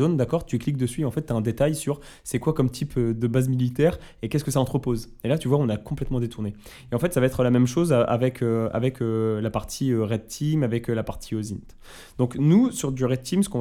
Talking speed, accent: 275 wpm, French